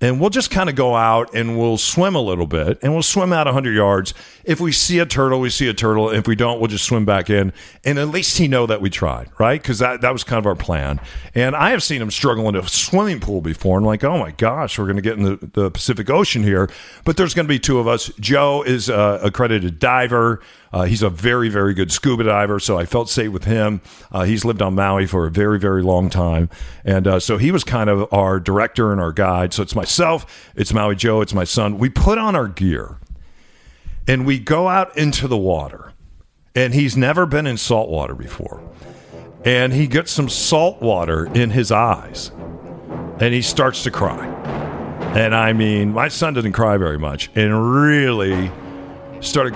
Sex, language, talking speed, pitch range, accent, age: male, English, 225 wpm, 95-135 Hz, American, 50-69